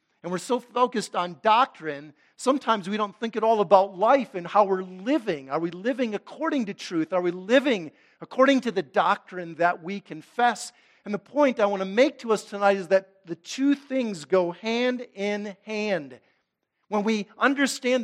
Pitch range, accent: 155-225 Hz, American